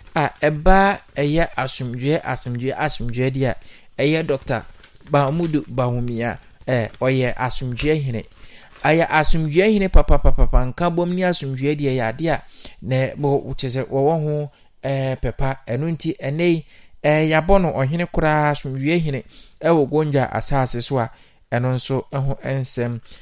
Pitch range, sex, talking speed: 115-145 Hz, male, 130 wpm